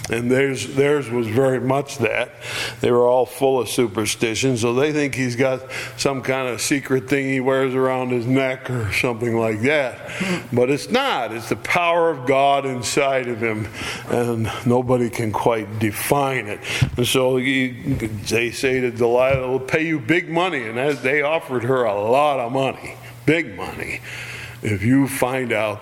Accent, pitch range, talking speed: American, 115-145 Hz, 175 wpm